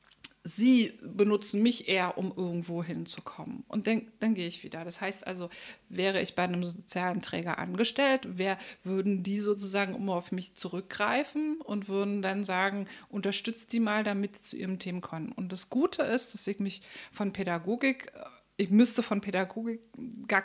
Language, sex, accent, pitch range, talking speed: German, female, German, 190-230 Hz, 170 wpm